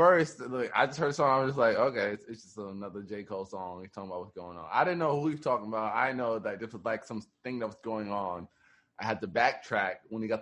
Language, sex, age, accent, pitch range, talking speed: English, male, 20-39, American, 110-150 Hz, 295 wpm